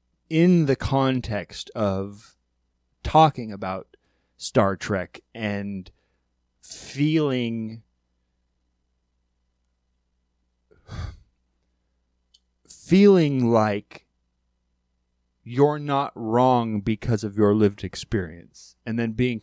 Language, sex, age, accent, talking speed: English, male, 30-49, American, 70 wpm